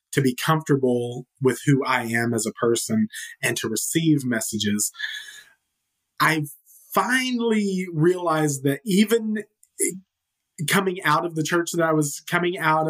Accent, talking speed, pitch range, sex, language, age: American, 135 wpm, 125-170 Hz, male, English, 30-49